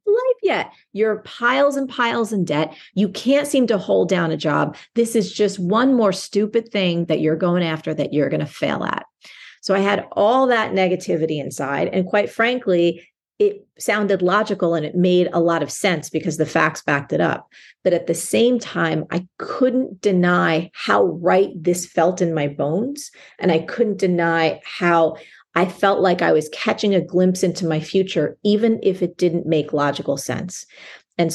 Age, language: 30-49, English